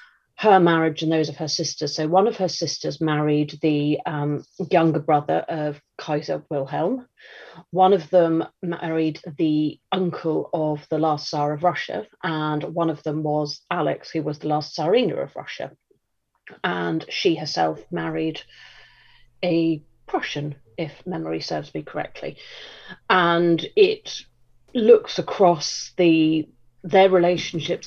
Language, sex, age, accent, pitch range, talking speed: English, female, 40-59, British, 145-170 Hz, 135 wpm